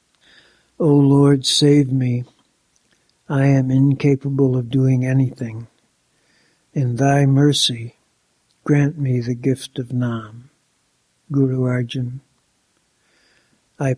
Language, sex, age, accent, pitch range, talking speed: English, male, 60-79, American, 125-140 Hz, 100 wpm